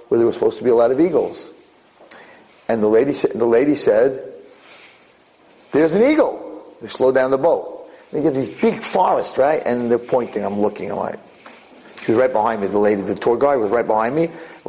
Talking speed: 220 wpm